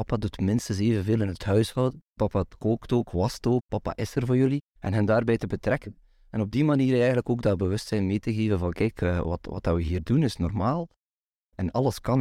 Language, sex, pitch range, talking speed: Dutch, male, 95-125 Hz, 225 wpm